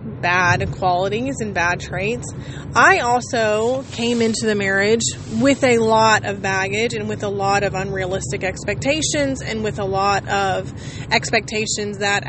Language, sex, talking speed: English, female, 145 wpm